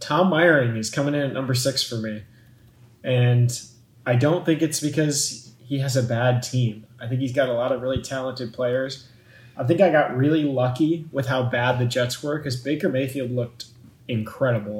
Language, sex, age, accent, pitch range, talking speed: English, male, 20-39, American, 120-140 Hz, 195 wpm